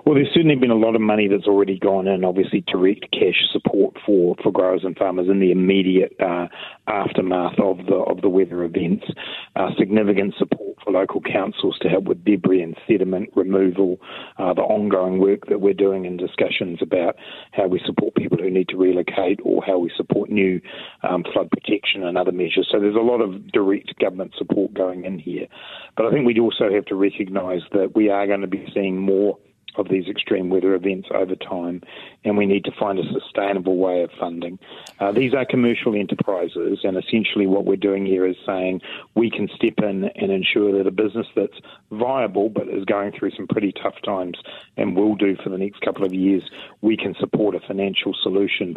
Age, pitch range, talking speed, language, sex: 40-59, 95-105 Hz, 205 wpm, English, male